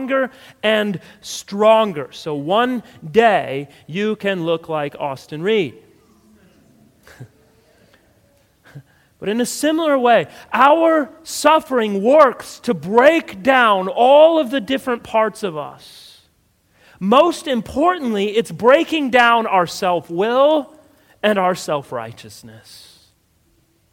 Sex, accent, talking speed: male, American, 100 wpm